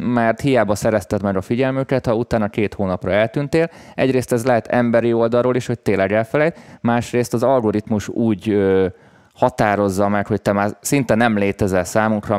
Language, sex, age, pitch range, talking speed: Hungarian, male, 20-39, 95-120 Hz, 160 wpm